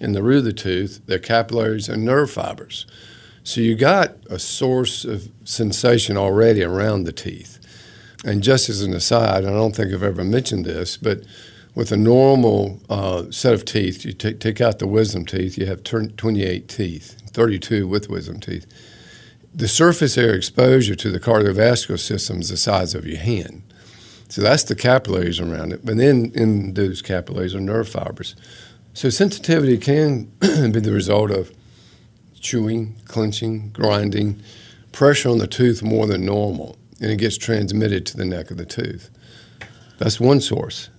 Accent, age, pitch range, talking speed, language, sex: American, 50-69, 100-120 Hz, 175 wpm, English, male